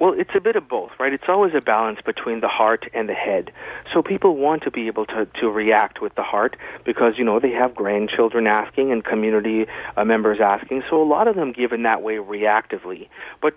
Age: 40-59